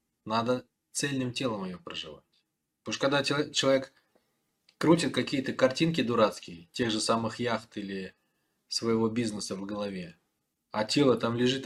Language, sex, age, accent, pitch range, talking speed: Russian, male, 20-39, native, 105-130 Hz, 135 wpm